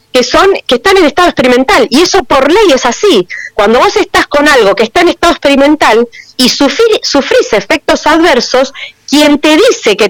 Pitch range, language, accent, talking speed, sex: 260-375 Hz, Spanish, Argentinian, 190 wpm, female